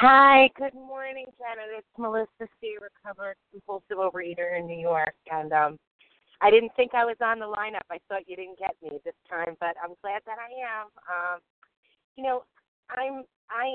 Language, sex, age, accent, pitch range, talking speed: English, female, 30-49, American, 175-235 Hz, 180 wpm